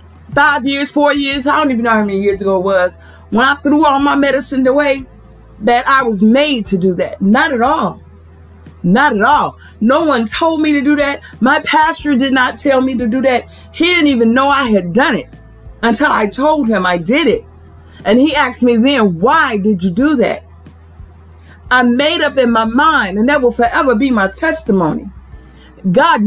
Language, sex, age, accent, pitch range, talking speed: English, female, 40-59, American, 235-350 Hz, 205 wpm